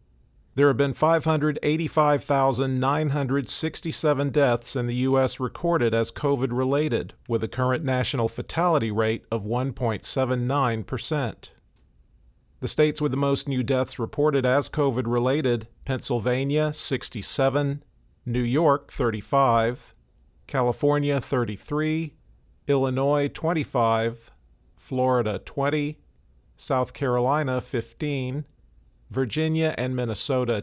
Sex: male